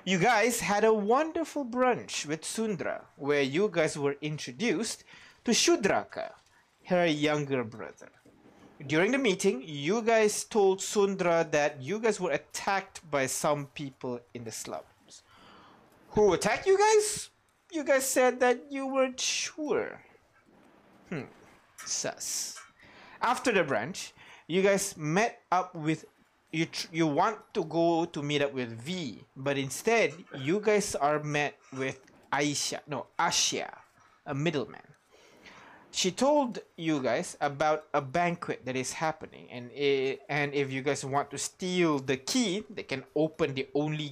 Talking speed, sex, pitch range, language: 145 wpm, male, 145-215 Hz, English